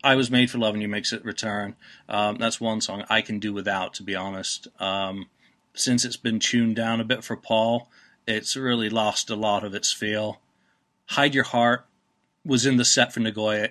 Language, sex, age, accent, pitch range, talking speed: English, male, 40-59, American, 100-120 Hz, 210 wpm